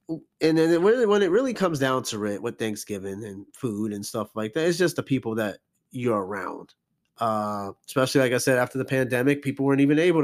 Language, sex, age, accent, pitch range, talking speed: English, male, 30-49, American, 125-160 Hz, 210 wpm